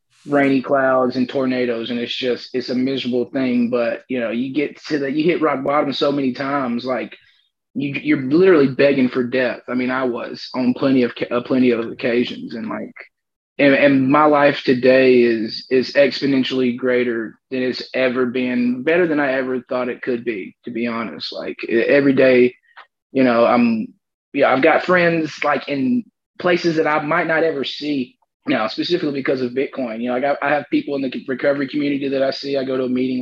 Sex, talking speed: male, 200 wpm